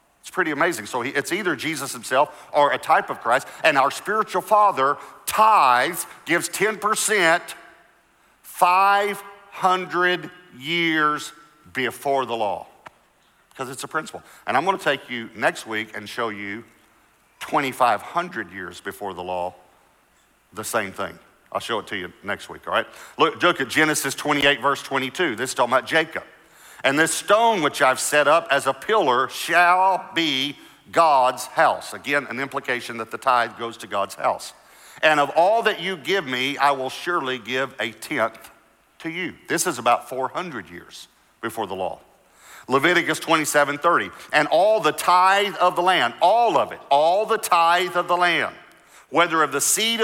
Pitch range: 130-180 Hz